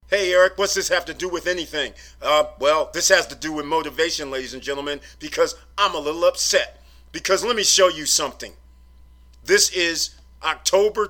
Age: 40-59